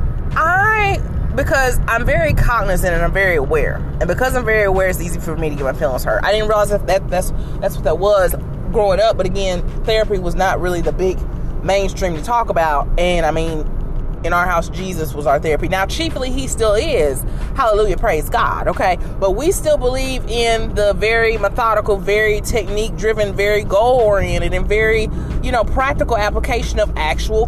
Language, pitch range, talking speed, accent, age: English, 155-220 Hz, 190 wpm, American, 20-39